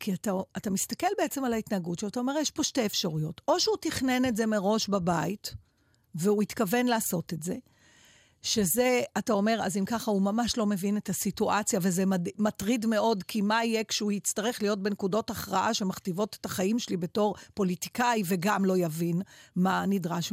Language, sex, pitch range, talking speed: Hebrew, female, 185-245 Hz, 175 wpm